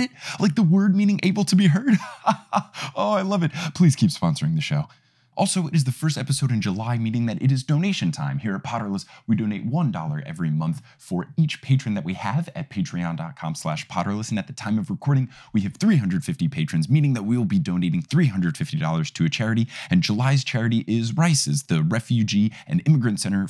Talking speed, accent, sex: 200 wpm, American, male